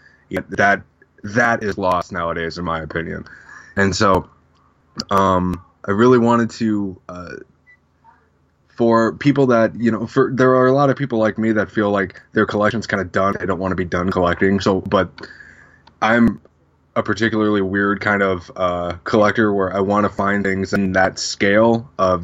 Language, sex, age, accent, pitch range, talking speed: English, male, 20-39, American, 95-110 Hz, 180 wpm